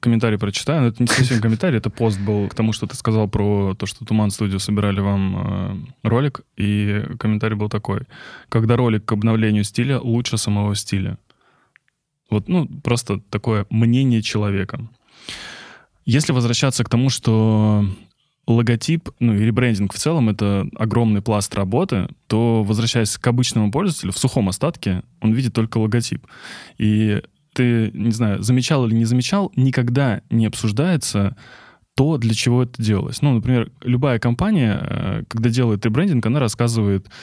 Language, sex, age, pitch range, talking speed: Russian, male, 20-39, 105-125 Hz, 150 wpm